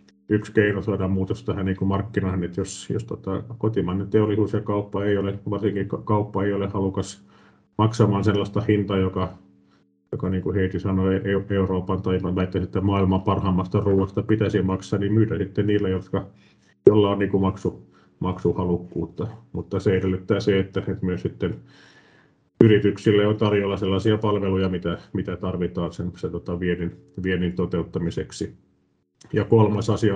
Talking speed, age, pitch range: 145 wpm, 30-49, 95-105 Hz